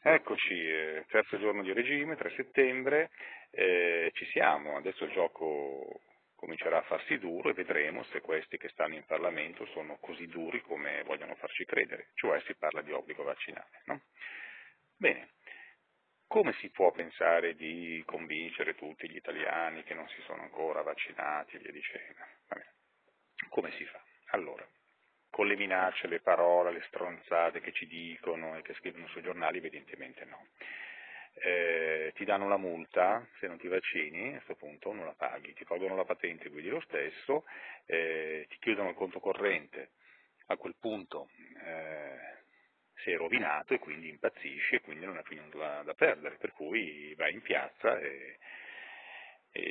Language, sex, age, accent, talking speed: Italian, male, 40-59, native, 160 wpm